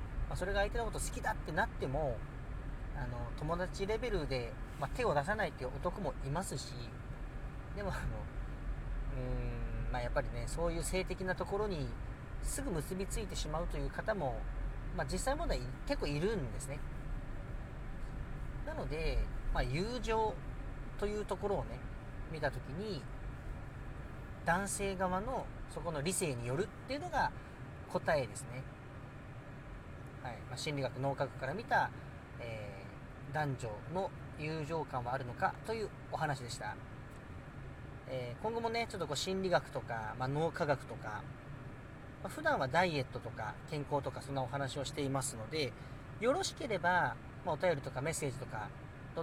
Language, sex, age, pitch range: Japanese, male, 40-59, 125-165 Hz